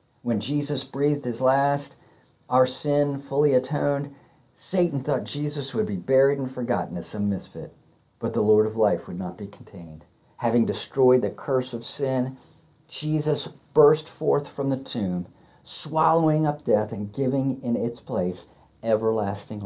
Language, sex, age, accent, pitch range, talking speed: English, male, 50-69, American, 105-140 Hz, 155 wpm